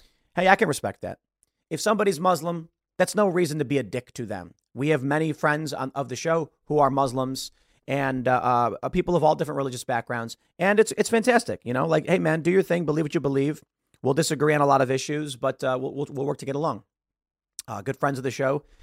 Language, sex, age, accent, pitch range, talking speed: English, male, 40-59, American, 130-175 Hz, 240 wpm